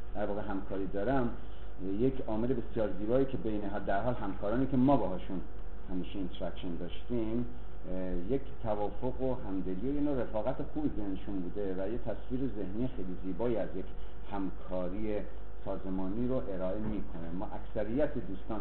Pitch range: 90-120 Hz